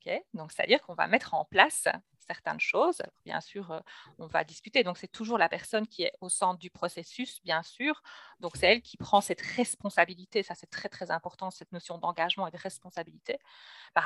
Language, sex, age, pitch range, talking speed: French, female, 40-59, 175-240 Hz, 200 wpm